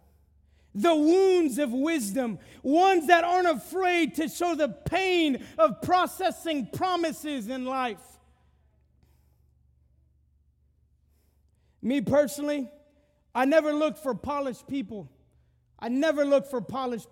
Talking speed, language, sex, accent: 105 wpm, English, male, American